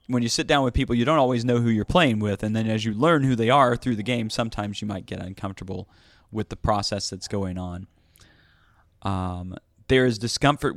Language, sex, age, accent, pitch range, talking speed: English, male, 30-49, American, 100-120 Hz, 225 wpm